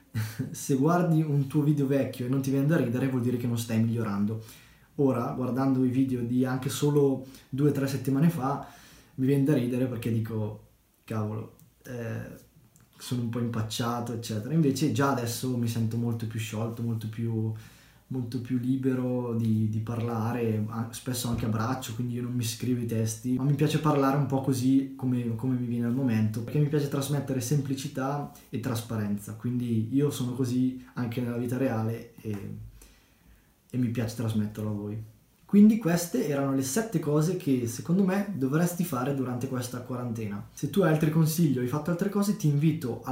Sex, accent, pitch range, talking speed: male, native, 115-145 Hz, 185 wpm